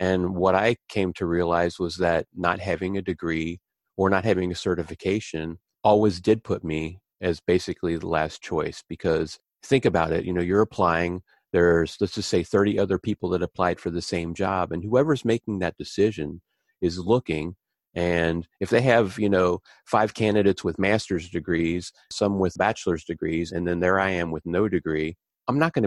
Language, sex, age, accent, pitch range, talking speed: English, male, 40-59, American, 85-105 Hz, 185 wpm